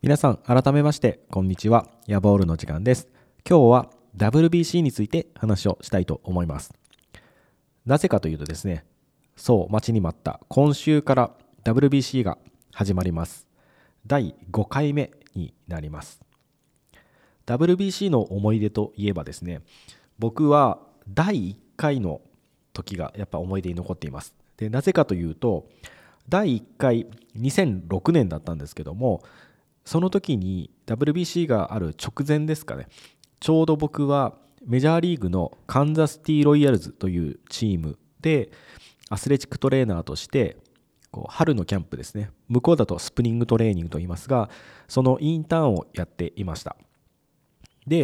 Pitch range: 95-140 Hz